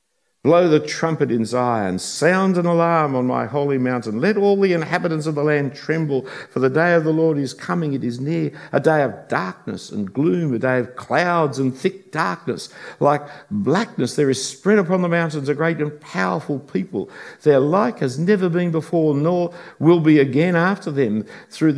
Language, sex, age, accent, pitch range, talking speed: English, male, 50-69, Australian, 135-180 Hz, 195 wpm